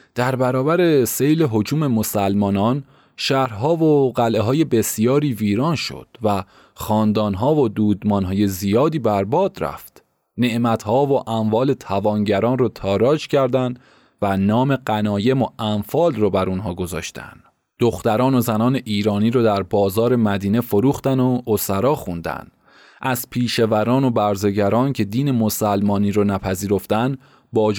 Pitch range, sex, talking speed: 100-130 Hz, male, 120 wpm